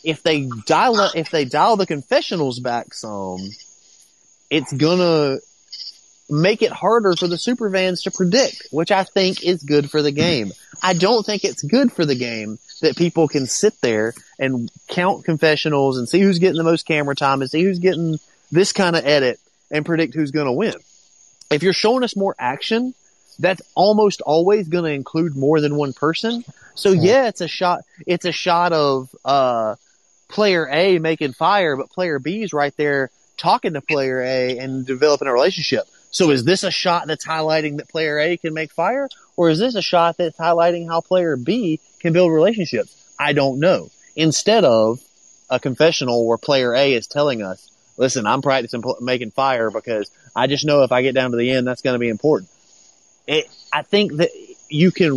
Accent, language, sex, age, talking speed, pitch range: American, English, male, 30-49, 190 wpm, 135-180 Hz